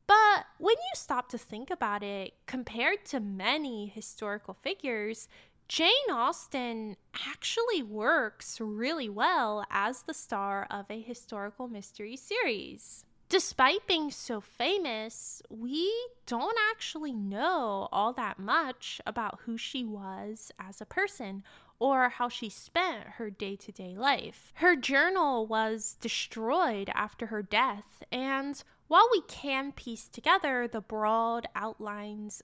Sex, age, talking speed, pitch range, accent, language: female, 10-29, 125 wpm, 215-305 Hz, American, English